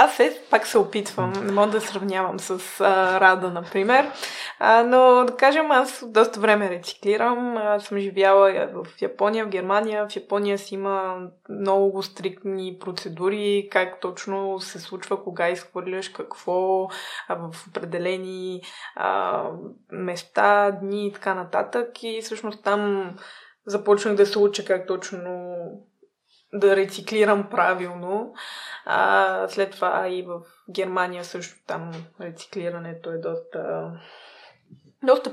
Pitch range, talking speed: 180-215 Hz, 125 wpm